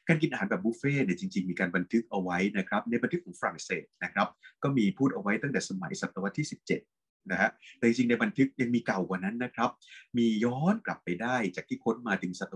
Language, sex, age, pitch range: Thai, male, 20-39, 115-160 Hz